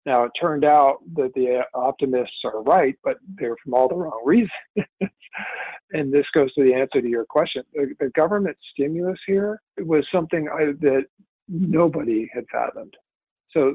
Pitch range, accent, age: 125-155 Hz, American, 50-69